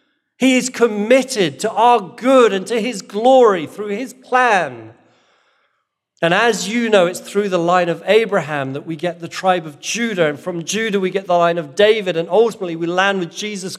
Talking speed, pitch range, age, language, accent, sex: 195 wpm, 150-200 Hz, 40-59, English, British, male